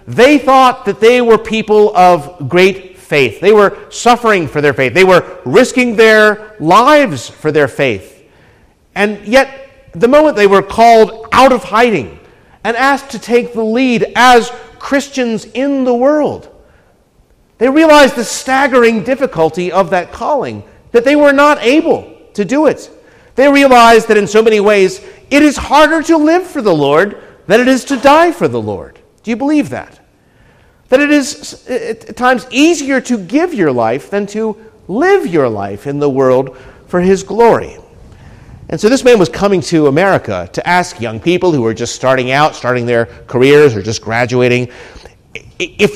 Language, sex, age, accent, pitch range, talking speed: English, male, 50-69, American, 180-270 Hz, 170 wpm